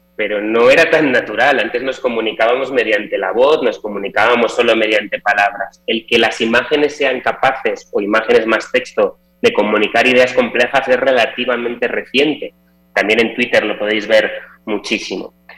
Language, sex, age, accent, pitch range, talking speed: Spanish, male, 30-49, Spanish, 105-165 Hz, 155 wpm